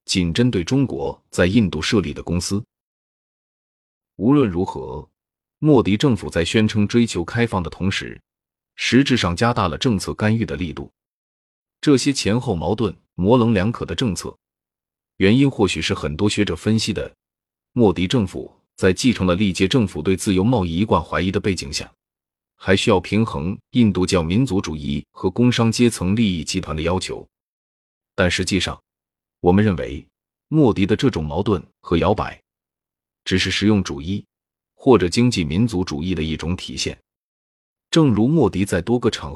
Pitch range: 85-115 Hz